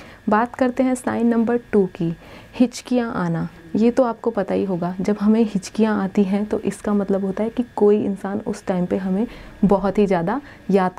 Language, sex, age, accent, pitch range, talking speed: Hindi, female, 30-49, native, 200-250 Hz, 195 wpm